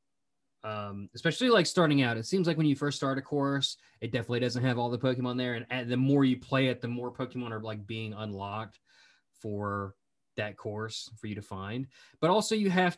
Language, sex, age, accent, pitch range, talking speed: English, male, 20-39, American, 115-145 Hz, 215 wpm